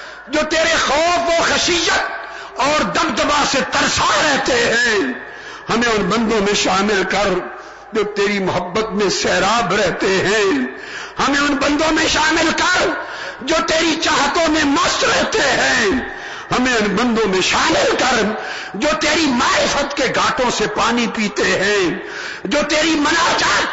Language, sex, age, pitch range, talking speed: Urdu, male, 50-69, 235-335 Hz, 145 wpm